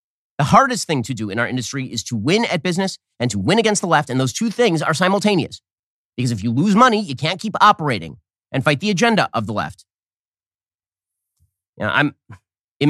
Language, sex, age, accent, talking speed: English, male, 30-49, American, 205 wpm